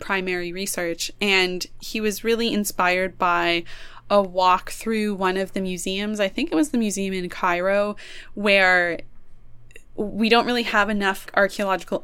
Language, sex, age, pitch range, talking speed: English, female, 20-39, 180-210 Hz, 150 wpm